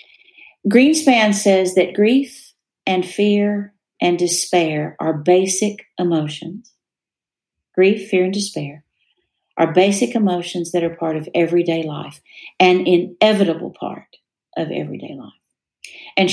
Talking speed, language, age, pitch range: 115 wpm, English, 50-69, 165-200 Hz